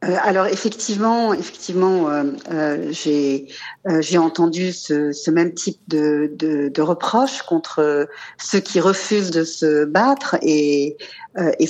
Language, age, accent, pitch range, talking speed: French, 50-69, French, 155-190 Hz, 135 wpm